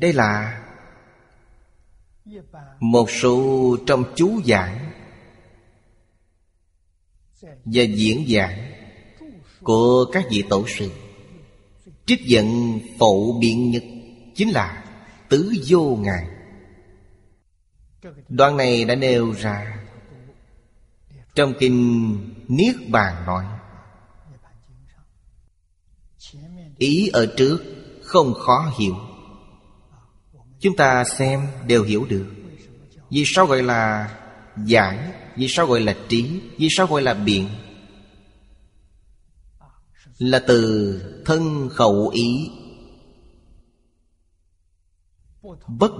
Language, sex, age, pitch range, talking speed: Vietnamese, male, 30-49, 95-130 Hz, 90 wpm